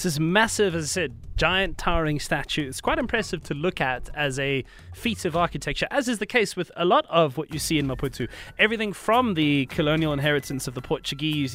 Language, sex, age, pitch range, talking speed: English, male, 20-39, 145-195 Hz, 215 wpm